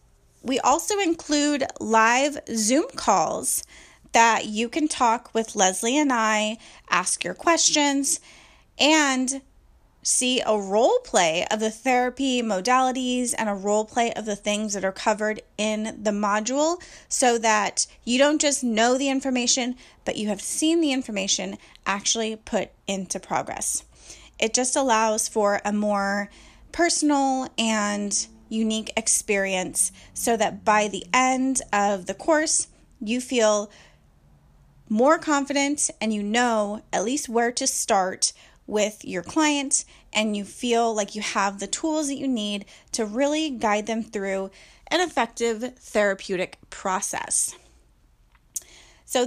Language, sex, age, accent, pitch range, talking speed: English, female, 30-49, American, 210-275 Hz, 135 wpm